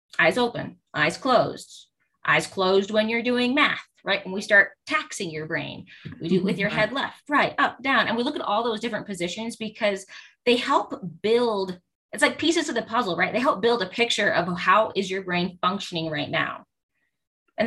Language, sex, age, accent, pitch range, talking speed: English, female, 20-39, American, 175-220 Hz, 205 wpm